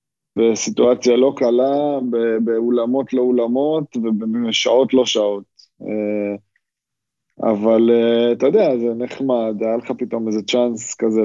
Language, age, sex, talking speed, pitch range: Hebrew, 20-39, male, 105 wpm, 105-125 Hz